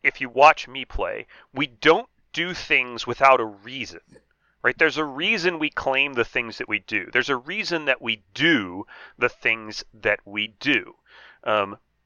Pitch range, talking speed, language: 115-150 Hz, 175 wpm, English